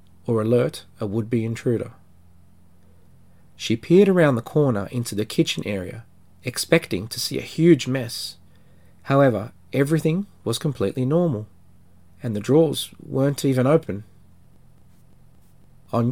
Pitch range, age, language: 90-130 Hz, 40-59, English